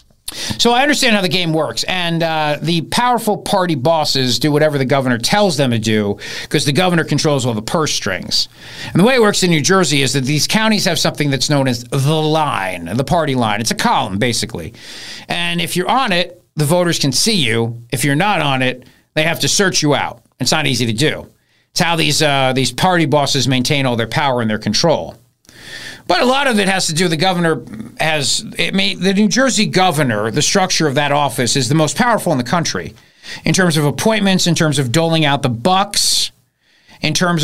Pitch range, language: 140-190 Hz, English